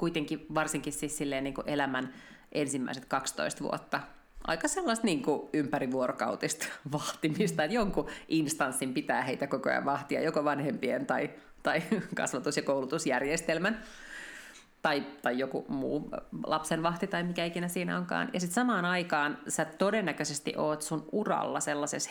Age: 30-49